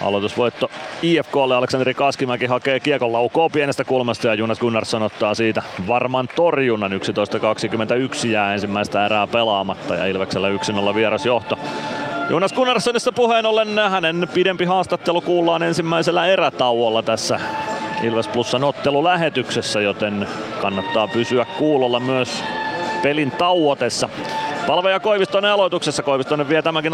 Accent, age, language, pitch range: native, 30-49, Finnish, 120-150 Hz